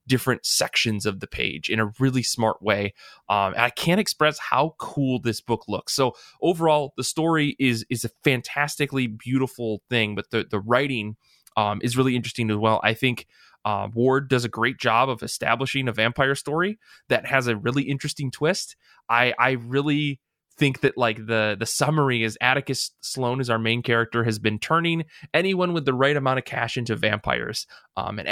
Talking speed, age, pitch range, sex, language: 185 wpm, 20-39, 115-145 Hz, male, English